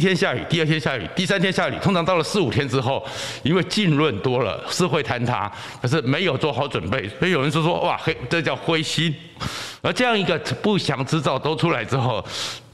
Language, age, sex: Chinese, 60-79, male